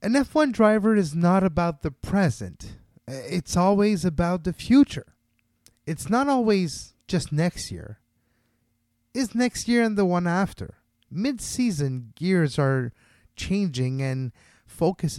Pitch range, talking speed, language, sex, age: 125-185 Hz, 125 wpm, English, male, 30-49